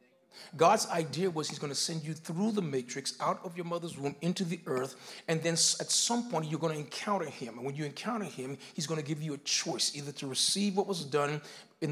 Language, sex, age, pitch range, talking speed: English, male, 40-59, 145-180 Hz, 240 wpm